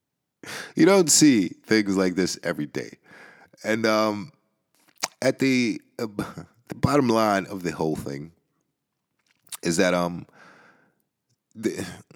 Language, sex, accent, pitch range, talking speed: English, male, American, 75-100 Hz, 125 wpm